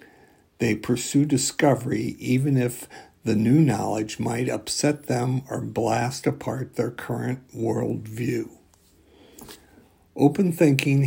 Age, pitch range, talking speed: 60-79, 115-145 Hz, 110 wpm